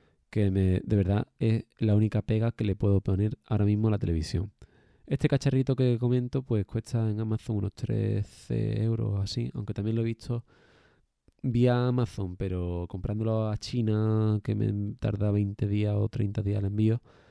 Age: 20-39